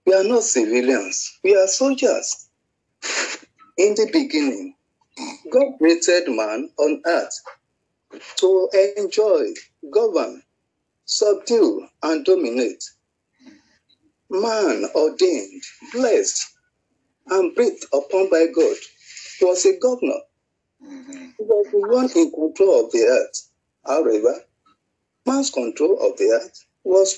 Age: 50-69